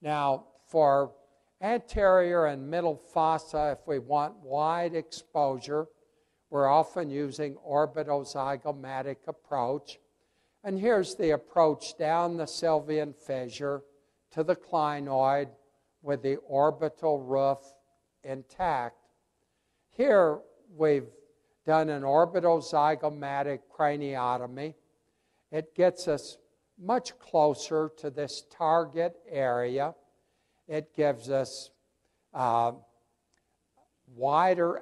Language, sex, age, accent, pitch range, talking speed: English, male, 60-79, American, 135-160 Hz, 90 wpm